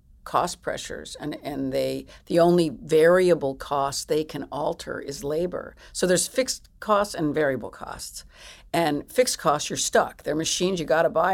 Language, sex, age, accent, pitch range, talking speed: English, female, 50-69, American, 150-185 Hz, 170 wpm